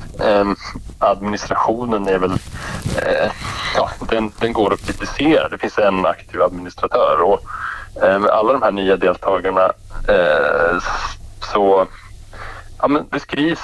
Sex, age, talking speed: male, 30-49, 115 wpm